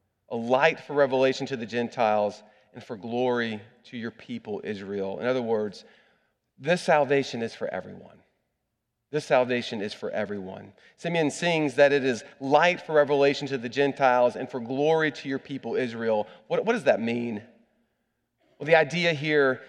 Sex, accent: male, American